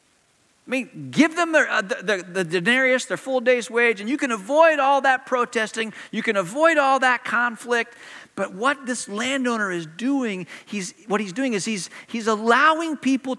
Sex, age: male, 40-59